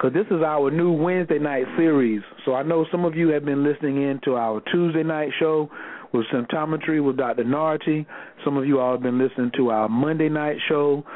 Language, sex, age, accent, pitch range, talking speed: English, male, 40-59, American, 125-150 Hz, 215 wpm